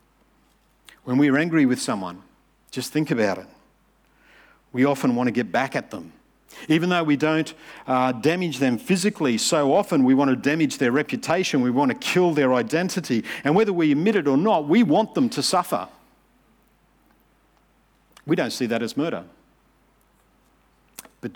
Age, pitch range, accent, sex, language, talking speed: 50-69, 135-185 Hz, Australian, male, English, 165 wpm